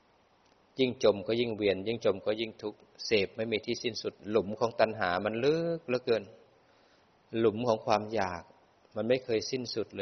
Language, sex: Thai, male